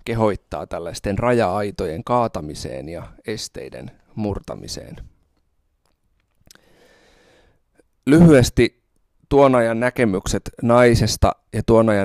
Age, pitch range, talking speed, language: 30-49, 95-115 Hz, 75 wpm, Finnish